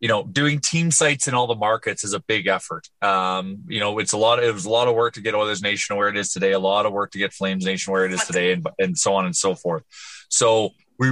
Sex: male